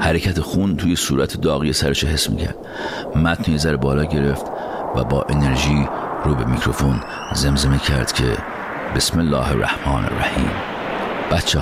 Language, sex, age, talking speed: Persian, male, 50-69, 135 wpm